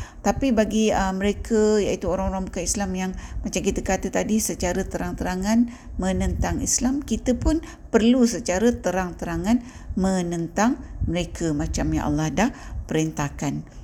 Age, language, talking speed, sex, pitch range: 50-69, Malay, 125 wpm, female, 170-220 Hz